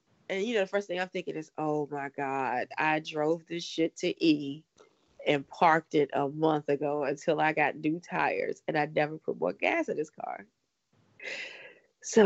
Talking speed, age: 190 wpm, 20-39